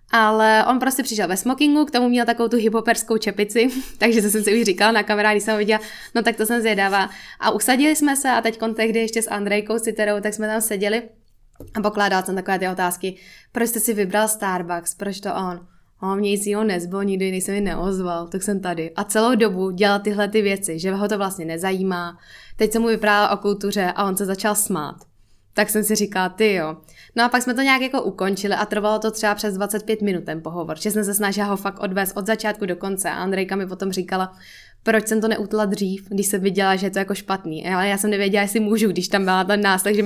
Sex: female